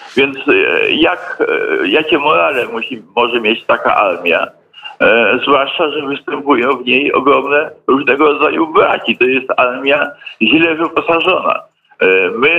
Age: 50-69